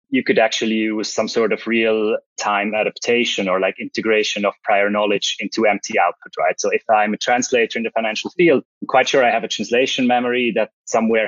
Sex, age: male, 20-39